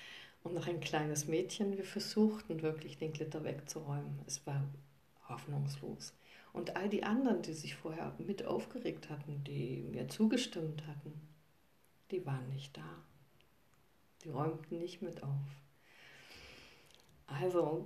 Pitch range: 150-175 Hz